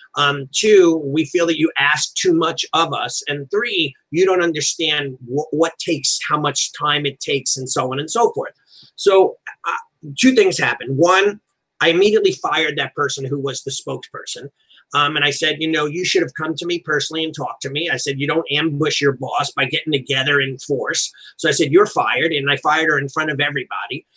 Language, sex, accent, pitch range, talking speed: English, male, American, 145-180 Hz, 215 wpm